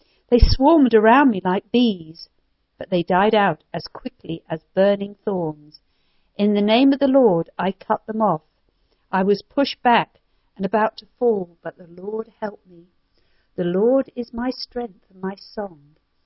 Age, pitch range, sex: 50-69, 175-240 Hz, female